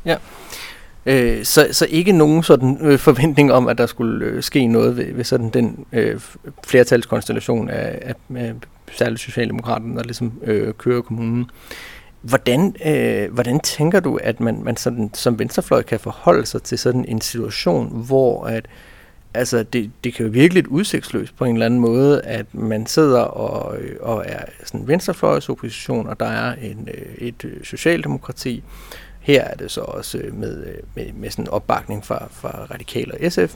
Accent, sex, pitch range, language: native, male, 115-130 Hz, Danish